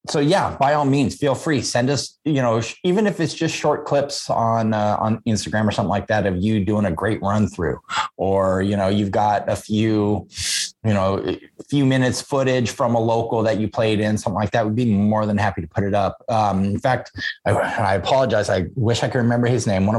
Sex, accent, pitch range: male, American, 100-130 Hz